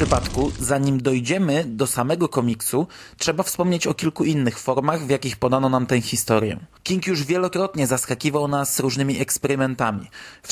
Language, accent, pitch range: Polish, native, 130-160 Hz